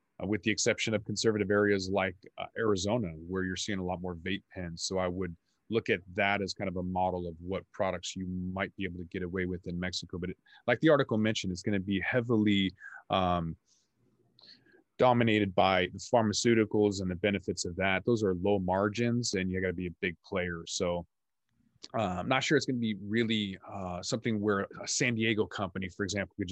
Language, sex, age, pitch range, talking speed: English, male, 30-49, 90-105 Hz, 215 wpm